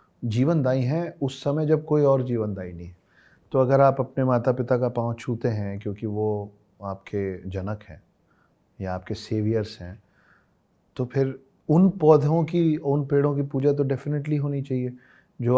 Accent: native